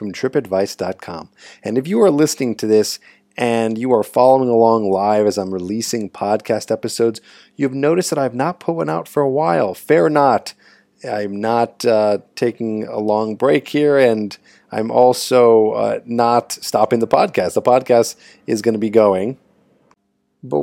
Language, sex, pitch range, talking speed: English, male, 100-125 Hz, 165 wpm